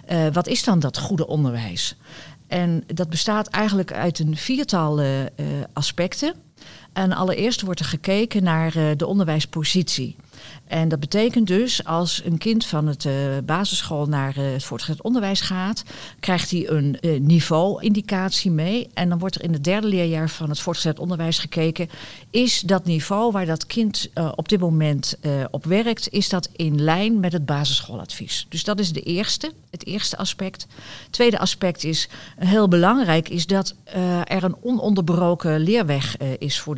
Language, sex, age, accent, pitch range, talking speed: Dutch, female, 50-69, Dutch, 150-190 Hz, 175 wpm